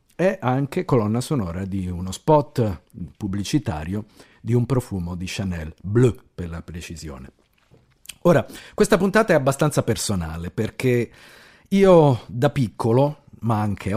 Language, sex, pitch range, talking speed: Italian, male, 100-135 Hz, 125 wpm